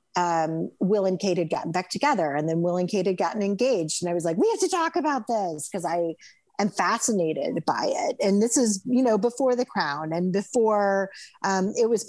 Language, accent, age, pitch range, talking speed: English, American, 40-59, 175-225 Hz, 225 wpm